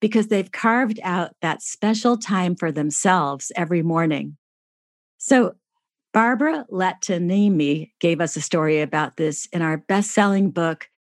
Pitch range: 160-215 Hz